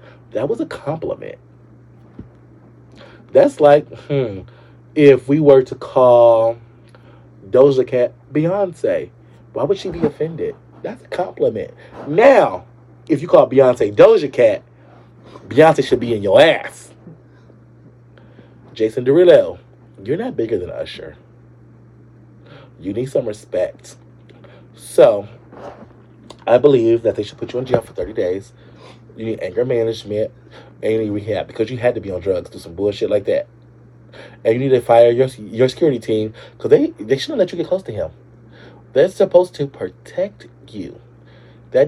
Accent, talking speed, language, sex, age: American, 150 wpm, English, male, 30-49